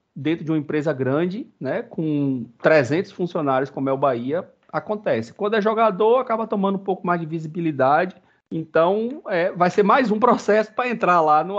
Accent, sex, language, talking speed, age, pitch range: Brazilian, male, Portuguese, 180 wpm, 40-59, 125-185 Hz